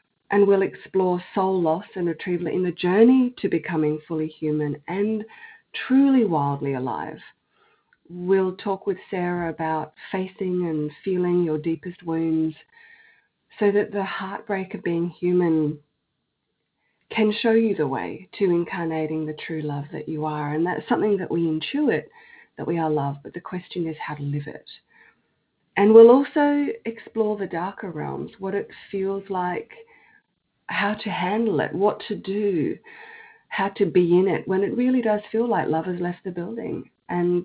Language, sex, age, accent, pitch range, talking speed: English, female, 30-49, Australian, 170-220 Hz, 165 wpm